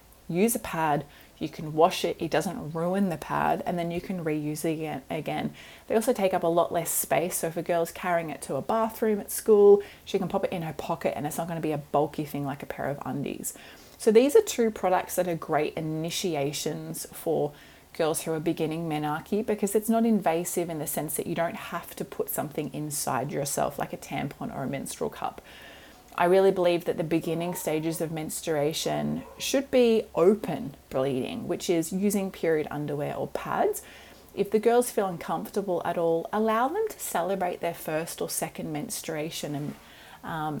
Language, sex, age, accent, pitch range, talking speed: English, female, 20-39, Australian, 165-205 Hz, 200 wpm